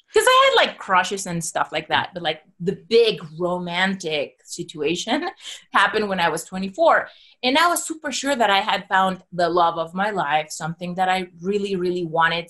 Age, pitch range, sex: 30-49, 170-225 Hz, female